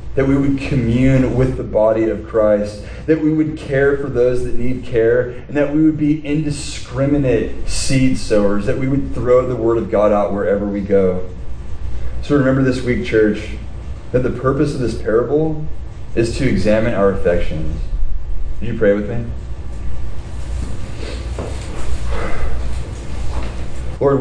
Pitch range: 100-130 Hz